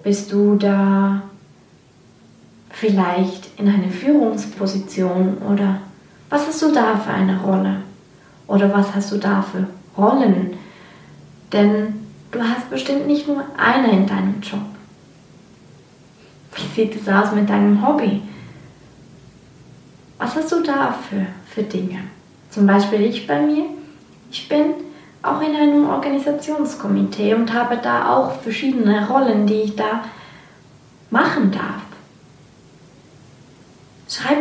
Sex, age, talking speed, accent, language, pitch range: female, 20-39, 120 wpm, German, German, 195-265 Hz